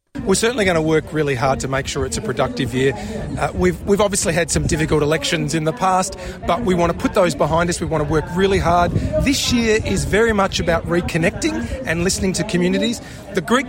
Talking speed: 230 wpm